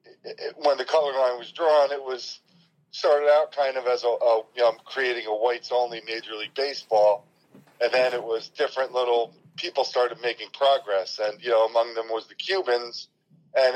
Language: English